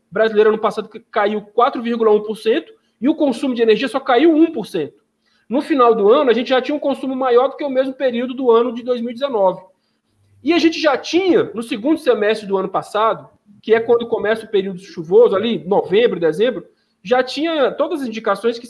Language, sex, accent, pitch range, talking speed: Portuguese, male, Brazilian, 220-280 Hz, 195 wpm